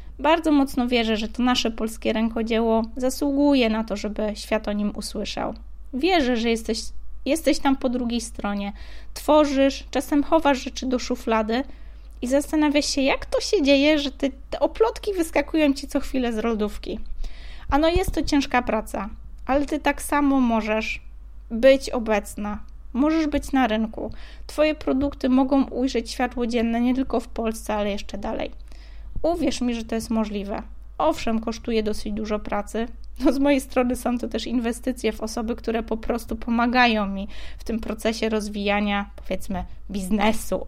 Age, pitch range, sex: 20-39, 220-275 Hz, female